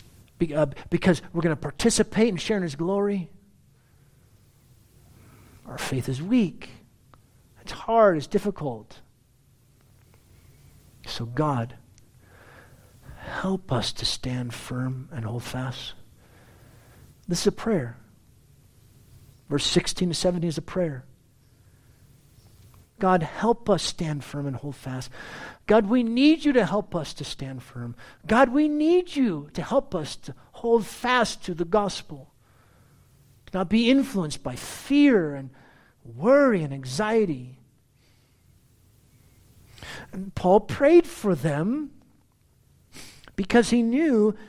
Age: 50-69